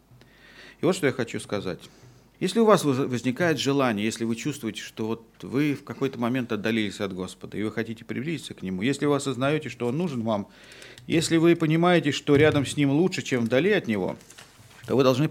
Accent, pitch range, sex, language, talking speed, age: native, 115-150 Hz, male, Russian, 195 wpm, 40-59